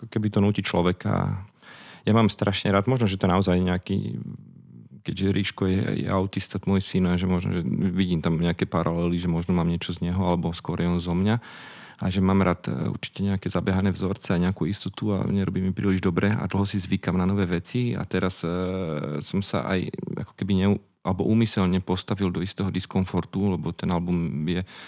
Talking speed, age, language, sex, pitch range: 195 wpm, 40-59, Slovak, male, 90-100 Hz